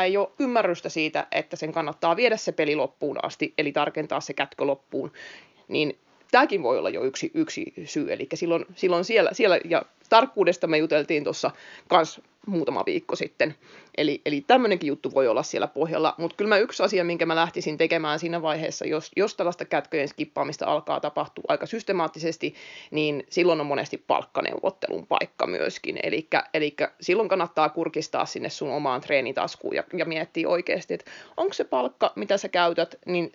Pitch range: 165-225 Hz